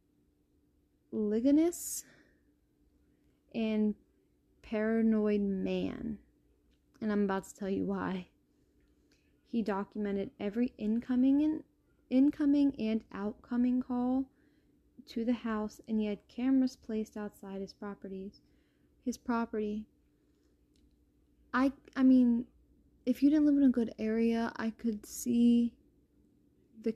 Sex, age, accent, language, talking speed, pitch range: female, 10-29, American, English, 110 wpm, 200-245 Hz